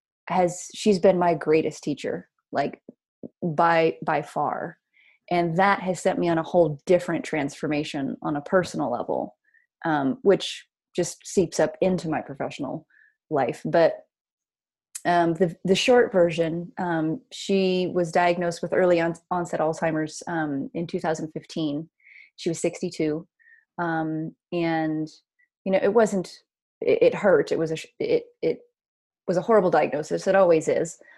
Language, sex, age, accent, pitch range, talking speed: English, female, 20-39, American, 160-210 Hz, 140 wpm